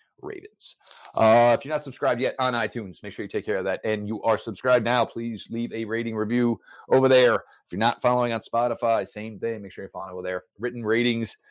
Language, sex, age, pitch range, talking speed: English, male, 30-49, 105-130 Hz, 230 wpm